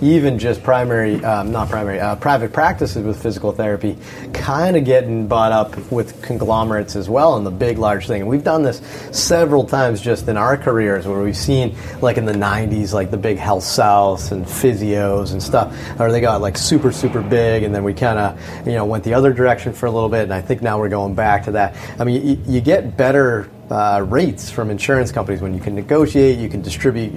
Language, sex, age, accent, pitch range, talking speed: English, male, 30-49, American, 105-130 Hz, 225 wpm